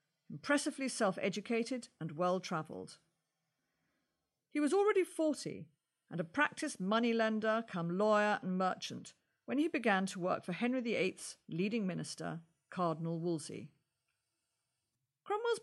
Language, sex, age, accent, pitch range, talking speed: English, female, 50-69, British, 165-240 Hz, 110 wpm